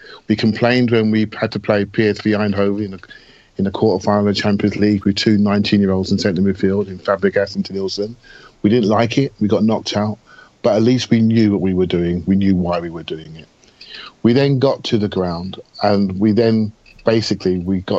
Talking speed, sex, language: 215 wpm, male, English